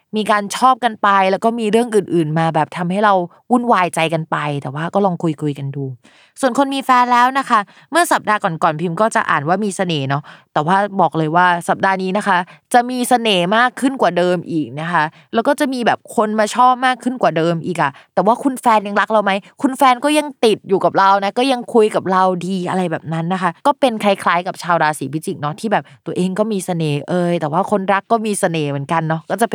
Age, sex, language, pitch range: 20-39, female, Thai, 170-230 Hz